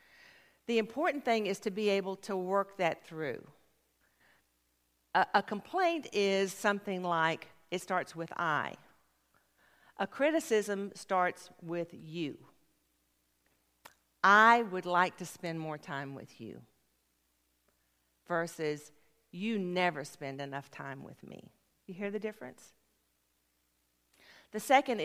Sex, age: female, 50-69